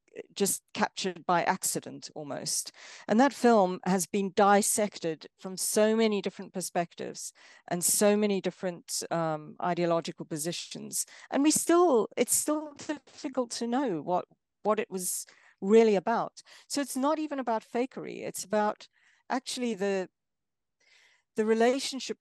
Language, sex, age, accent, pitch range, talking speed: English, female, 50-69, British, 180-230 Hz, 130 wpm